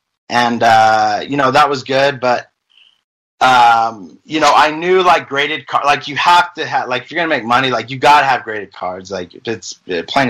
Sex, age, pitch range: male, 30-49, 115-140 Hz